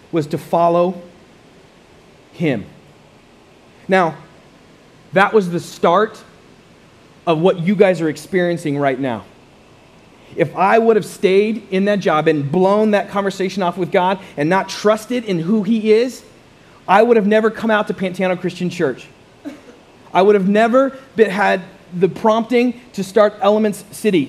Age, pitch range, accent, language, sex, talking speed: 30-49, 170-215 Hz, American, English, male, 150 wpm